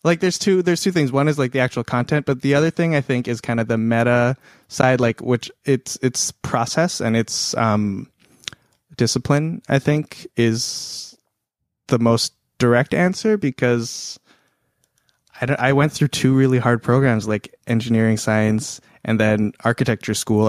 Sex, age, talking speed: male, 20-39, 165 wpm